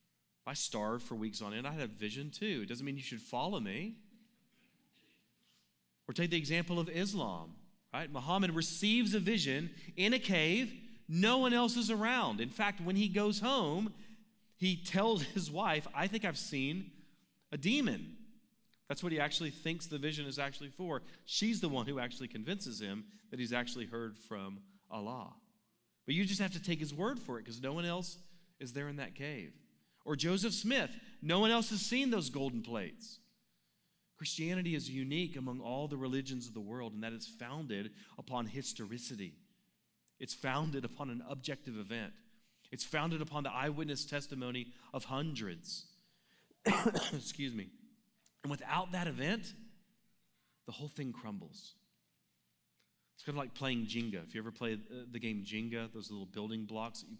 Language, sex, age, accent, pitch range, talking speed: English, male, 40-59, American, 125-205 Hz, 175 wpm